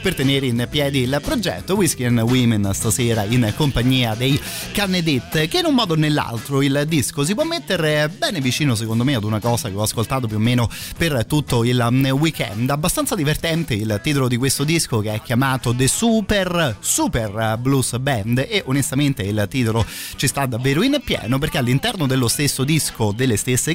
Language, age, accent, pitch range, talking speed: Italian, 30-49, native, 115-145 Hz, 185 wpm